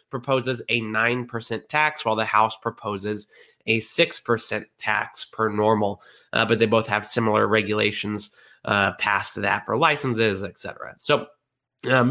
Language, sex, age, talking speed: English, male, 20-39, 145 wpm